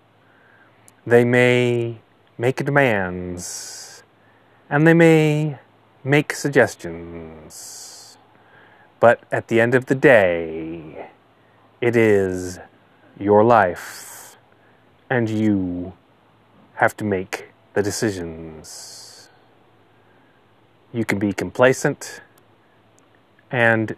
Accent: American